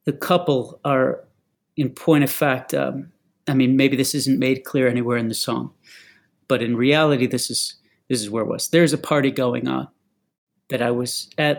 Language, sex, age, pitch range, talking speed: English, male, 40-59, 130-155 Hz, 195 wpm